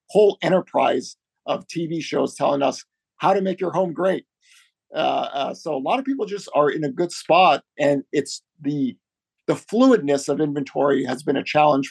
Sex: male